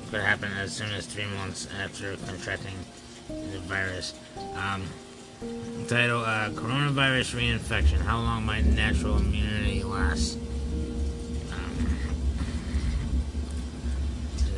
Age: 20-39